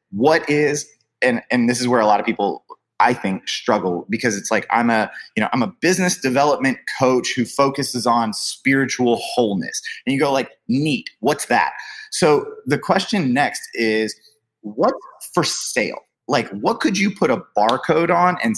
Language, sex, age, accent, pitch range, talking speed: English, male, 30-49, American, 115-195 Hz, 180 wpm